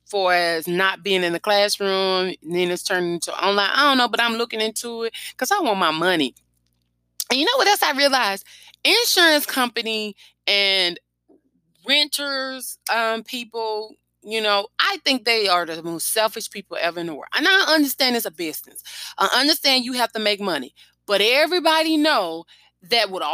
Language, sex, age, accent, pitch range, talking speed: English, female, 20-39, American, 200-285 Hz, 185 wpm